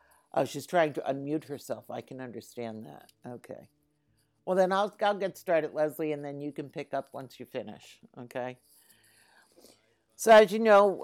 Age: 60-79